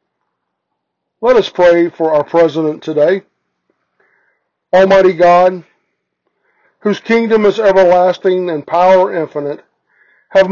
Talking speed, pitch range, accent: 95 wpm, 165-200 Hz, American